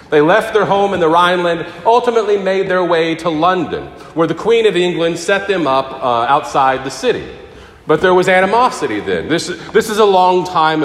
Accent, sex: American, male